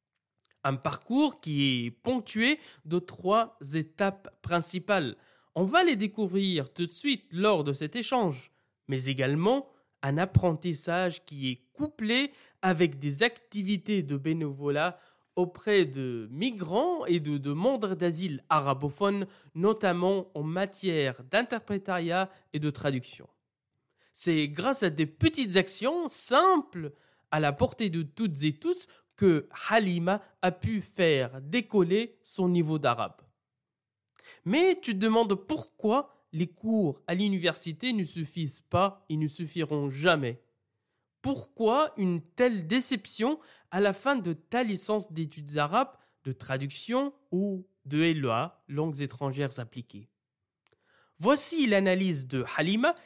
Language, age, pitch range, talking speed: French, 20-39, 145-220 Hz, 125 wpm